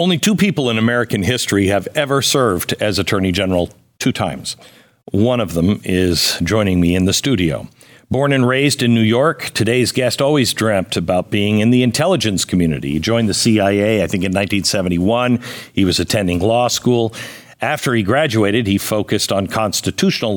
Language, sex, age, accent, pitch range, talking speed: English, male, 50-69, American, 95-120 Hz, 175 wpm